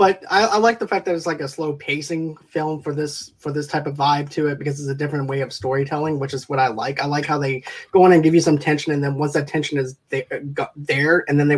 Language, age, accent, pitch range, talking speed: English, 20-39, American, 135-155 Hz, 285 wpm